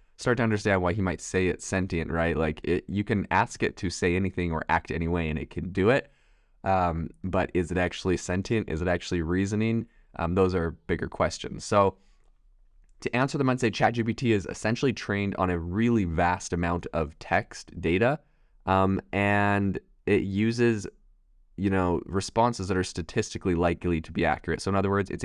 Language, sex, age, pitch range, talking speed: English, male, 20-39, 85-100 Hz, 190 wpm